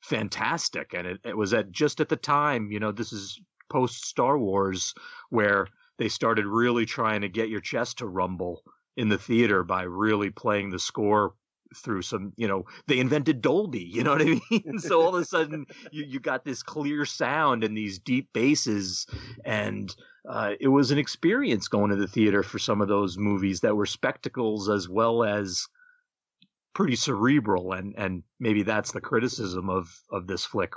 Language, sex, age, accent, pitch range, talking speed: English, male, 40-59, American, 105-155 Hz, 185 wpm